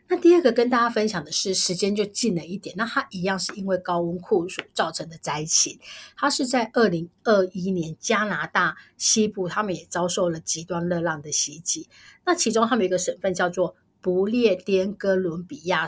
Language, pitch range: Chinese, 175-225 Hz